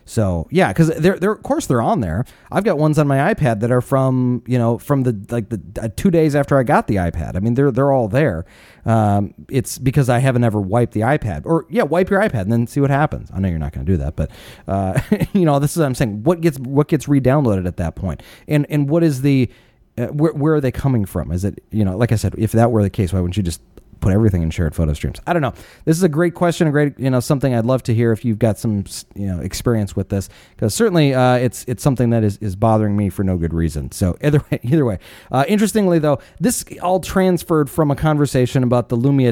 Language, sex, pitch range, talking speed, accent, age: English, male, 110-150 Hz, 265 wpm, American, 30-49